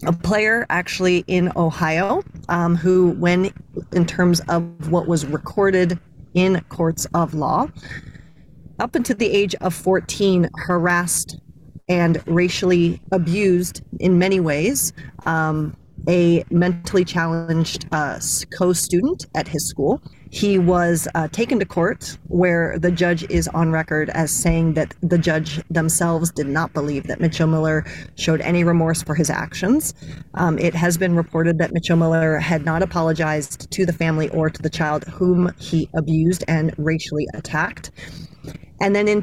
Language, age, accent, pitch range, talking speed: English, 40-59, American, 160-180 Hz, 150 wpm